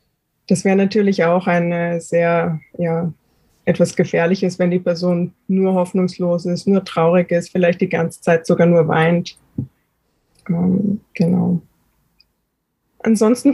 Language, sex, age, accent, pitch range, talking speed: German, female, 20-39, German, 175-205 Hz, 125 wpm